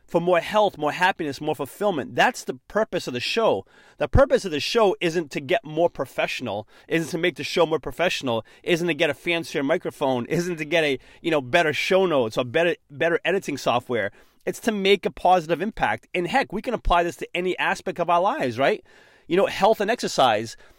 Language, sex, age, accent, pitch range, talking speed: English, male, 30-49, American, 165-220 Hz, 215 wpm